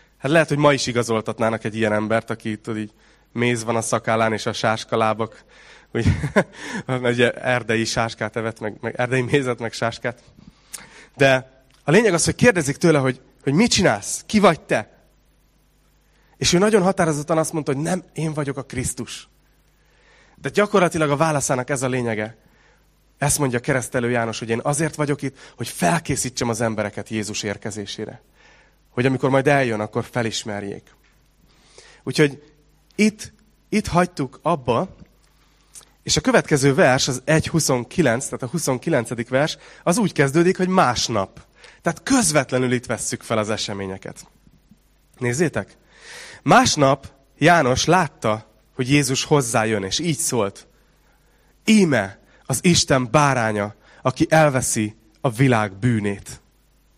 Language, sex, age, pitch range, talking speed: Hungarian, male, 30-49, 115-150 Hz, 135 wpm